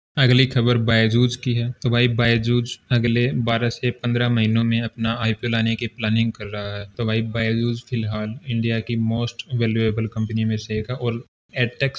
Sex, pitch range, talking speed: male, 110-120 Hz, 185 wpm